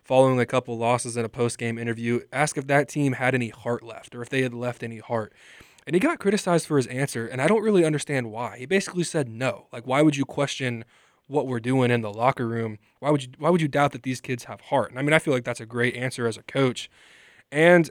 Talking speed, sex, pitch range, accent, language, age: 260 wpm, male, 120-145 Hz, American, English, 20-39